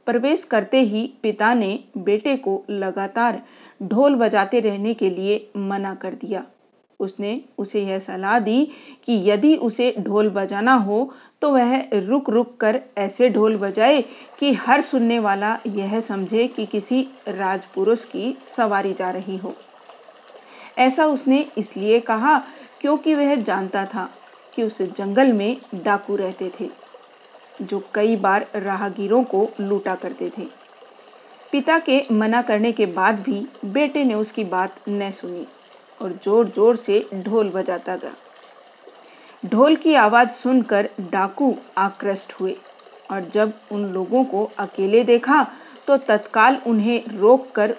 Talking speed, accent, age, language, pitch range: 140 wpm, native, 40-59, Hindi, 200-250 Hz